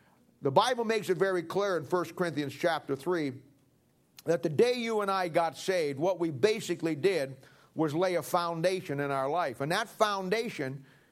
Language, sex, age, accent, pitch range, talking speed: English, male, 50-69, American, 160-195 Hz, 180 wpm